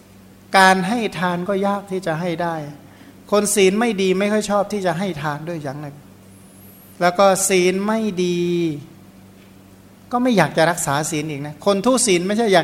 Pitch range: 150-185 Hz